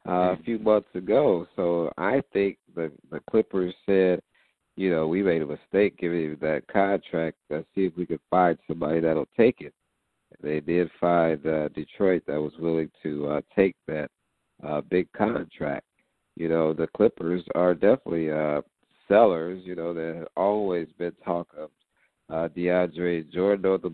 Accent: American